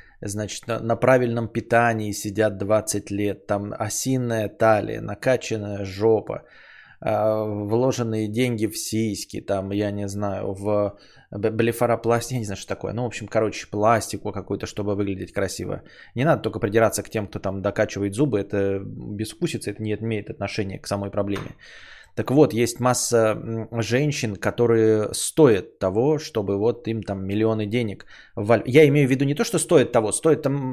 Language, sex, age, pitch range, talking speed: Bulgarian, male, 20-39, 105-130 Hz, 160 wpm